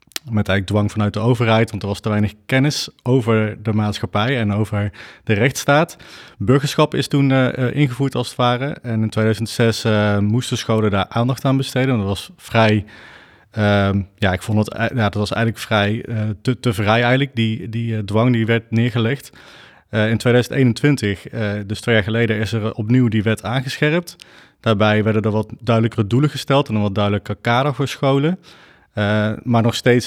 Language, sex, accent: Dutch, male, Dutch